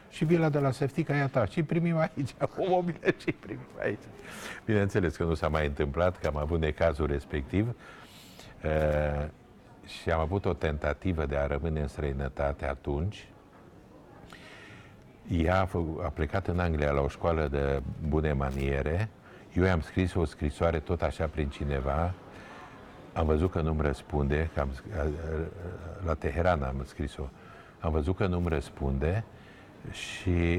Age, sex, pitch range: 60-79, male, 75-100 Hz